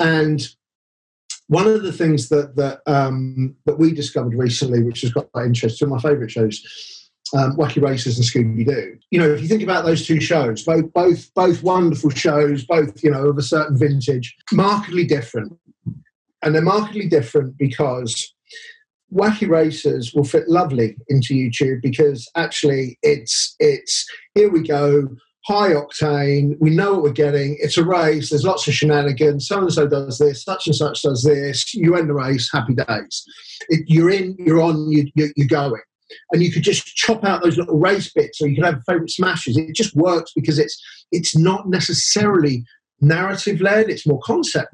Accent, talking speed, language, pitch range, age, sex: British, 175 wpm, English, 145-175 Hz, 40-59, male